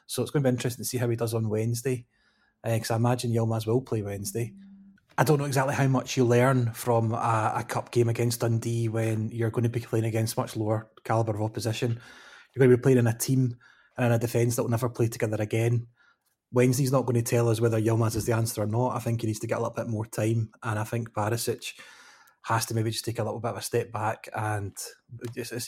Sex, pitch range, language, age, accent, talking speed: male, 110-125 Hz, English, 20-39, British, 255 wpm